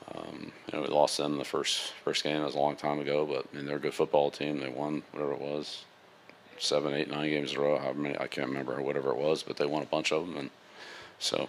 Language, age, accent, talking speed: English, 40-59, American, 280 wpm